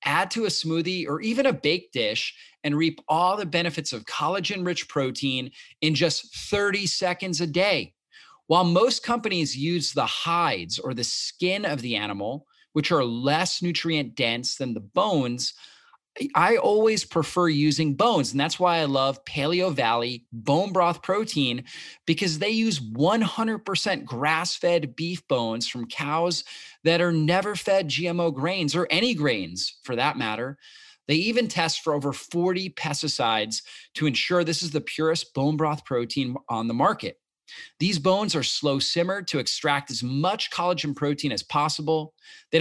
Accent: American